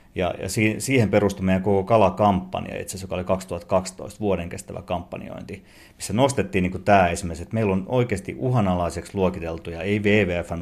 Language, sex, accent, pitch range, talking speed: Finnish, male, native, 90-105 Hz, 160 wpm